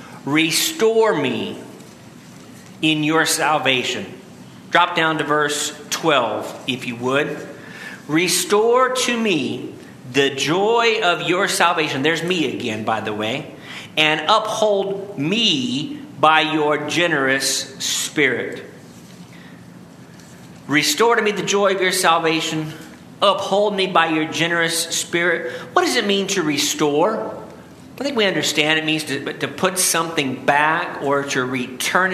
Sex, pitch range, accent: male, 140-185 Hz, American